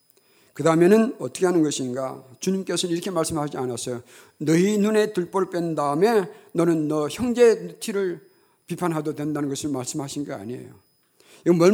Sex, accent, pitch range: male, native, 155-205 Hz